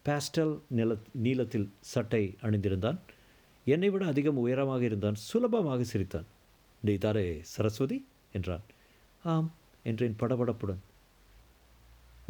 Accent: native